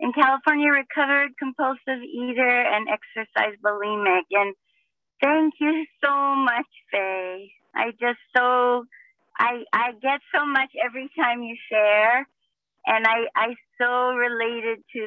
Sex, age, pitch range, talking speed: female, 40-59, 225-285 Hz, 125 wpm